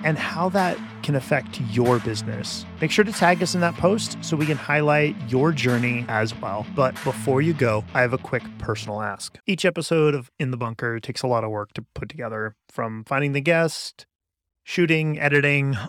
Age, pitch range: 30-49, 120-155 Hz